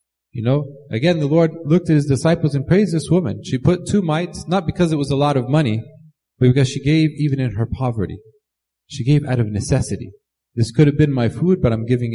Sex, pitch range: male, 120-155 Hz